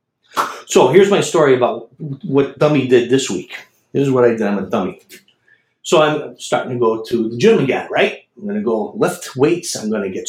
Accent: American